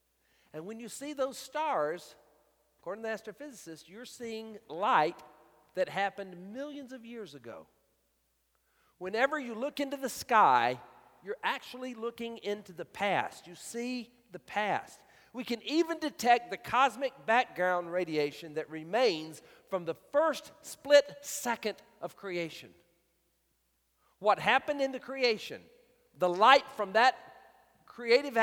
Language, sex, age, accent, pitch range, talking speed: English, male, 50-69, American, 160-260 Hz, 130 wpm